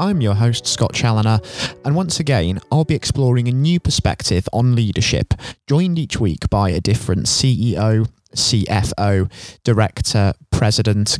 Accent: British